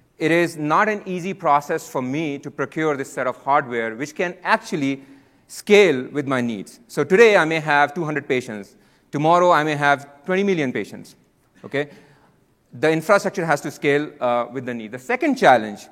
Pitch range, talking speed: 135-175 Hz, 180 wpm